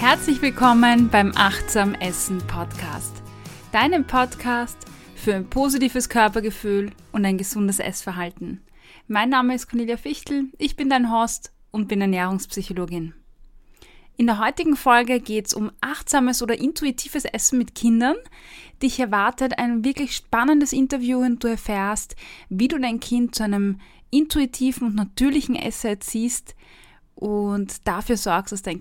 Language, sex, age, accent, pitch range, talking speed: German, female, 20-39, German, 200-255 Hz, 135 wpm